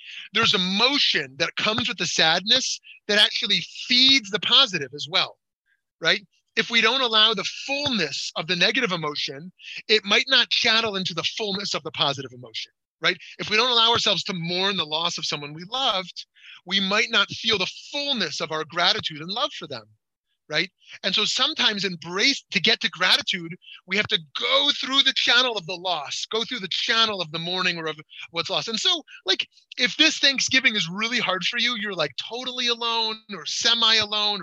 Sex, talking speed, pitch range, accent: male, 195 wpm, 175-245 Hz, American